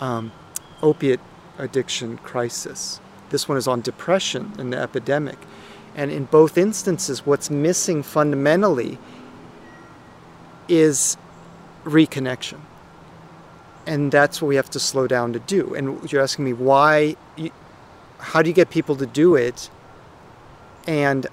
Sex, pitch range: male, 125-155 Hz